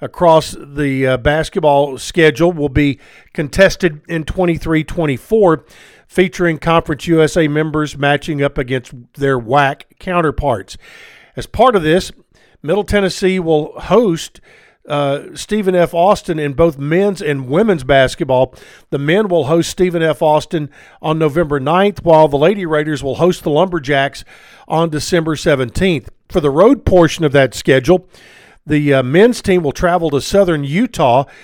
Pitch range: 145-180 Hz